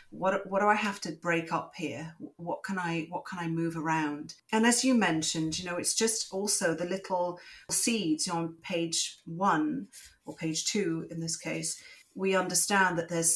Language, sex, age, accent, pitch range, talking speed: English, female, 40-59, British, 160-190 Hz, 190 wpm